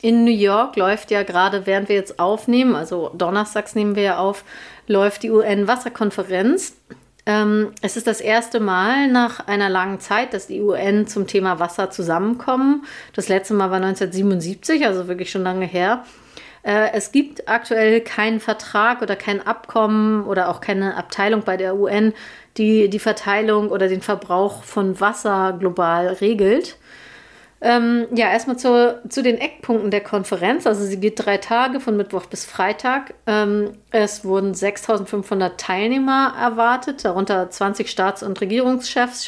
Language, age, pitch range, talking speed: German, 30-49, 195-235 Hz, 150 wpm